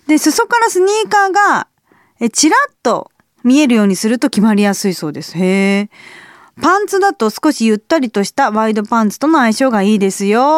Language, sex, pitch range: Japanese, female, 200-310 Hz